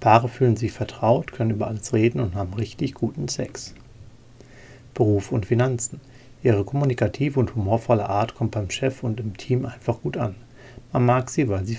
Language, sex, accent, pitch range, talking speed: German, male, German, 110-125 Hz, 180 wpm